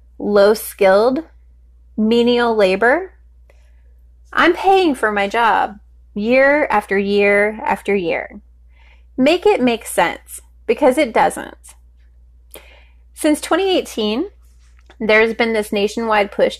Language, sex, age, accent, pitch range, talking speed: English, female, 20-39, American, 170-230 Hz, 100 wpm